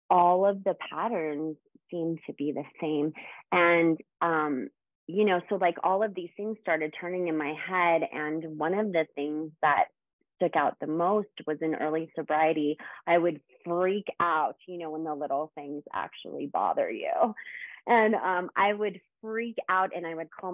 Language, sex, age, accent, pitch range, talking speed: English, female, 30-49, American, 155-180 Hz, 180 wpm